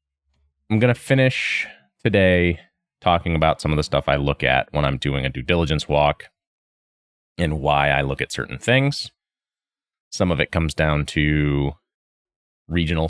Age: 30-49